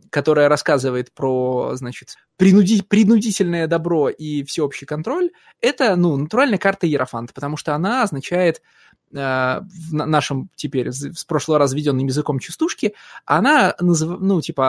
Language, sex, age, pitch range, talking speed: Russian, male, 20-39, 140-195 Hz, 125 wpm